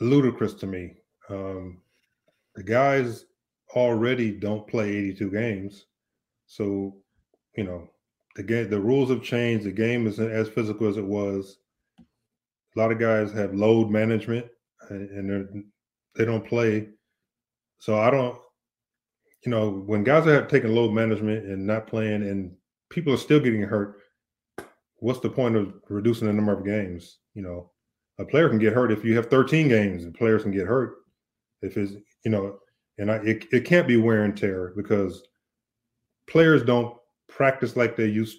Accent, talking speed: American, 165 wpm